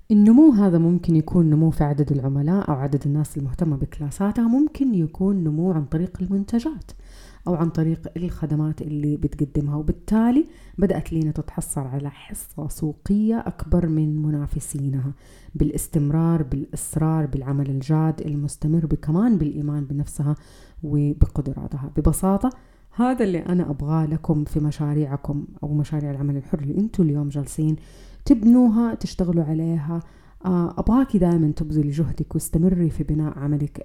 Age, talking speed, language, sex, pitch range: 30-49, 125 wpm, Arabic, female, 150-190 Hz